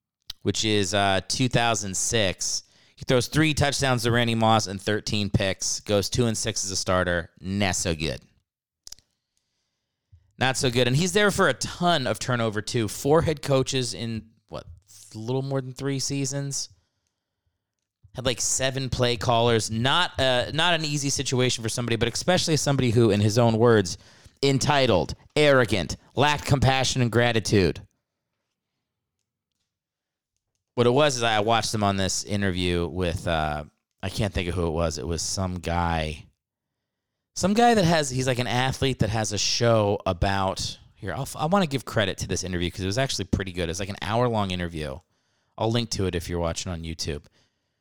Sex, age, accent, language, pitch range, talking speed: male, 30-49, American, English, 95-130 Hz, 175 wpm